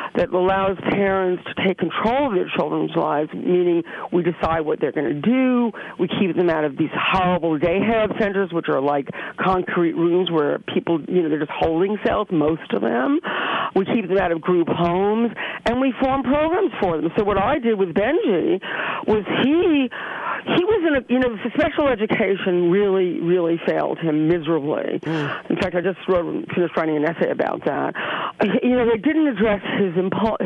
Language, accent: English, American